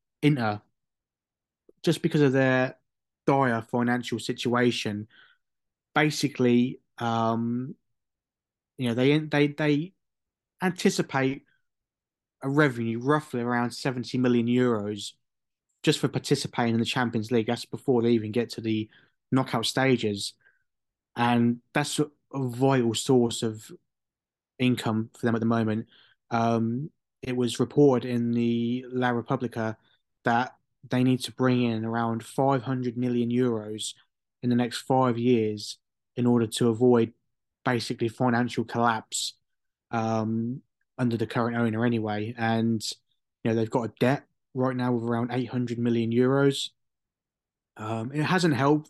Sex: male